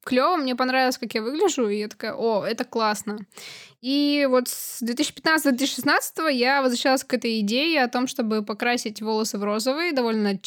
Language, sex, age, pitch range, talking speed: Russian, female, 10-29, 235-285 Hz, 165 wpm